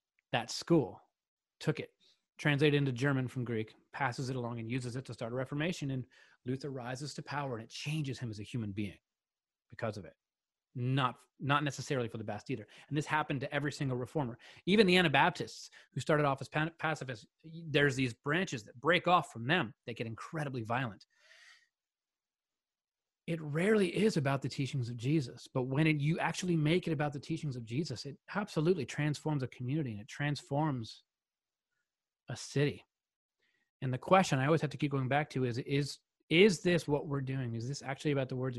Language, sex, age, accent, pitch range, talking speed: English, male, 30-49, American, 120-155 Hz, 190 wpm